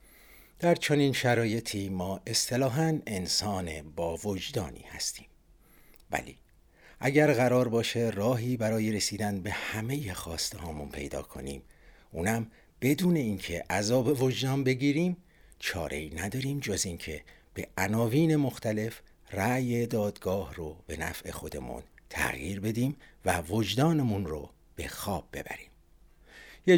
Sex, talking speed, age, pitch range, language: male, 110 wpm, 60-79, 85-125 Hz, Persian